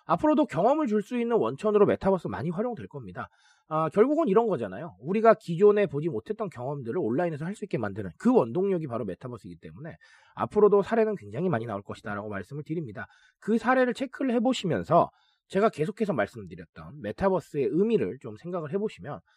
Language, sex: Korean, male